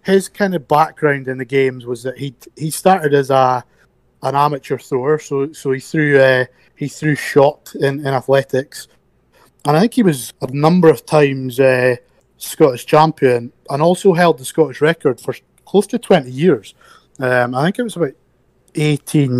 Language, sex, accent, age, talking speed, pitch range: English, male, British, 20-39, 180 wpm, 125-150 Hz